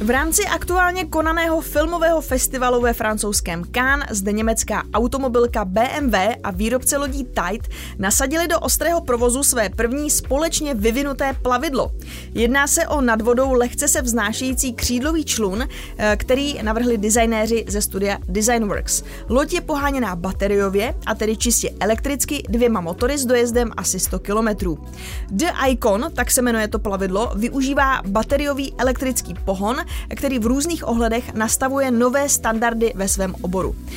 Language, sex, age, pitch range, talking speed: Czech, female, 20-39, 220-275 Hz, 135 wpm